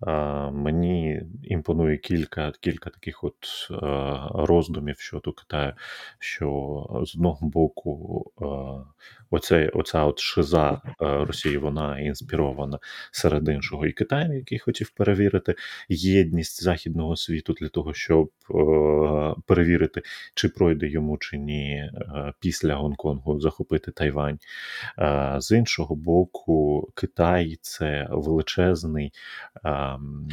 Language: Ukrainian